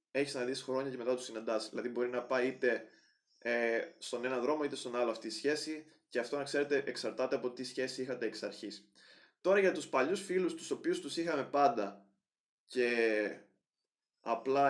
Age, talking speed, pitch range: 20-39, 190 wpm, 120-150 Hz